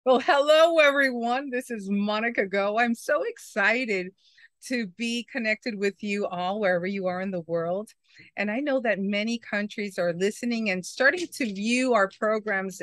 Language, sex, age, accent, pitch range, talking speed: English, female, 40-59, American, 195-255 Hz, 170 wpm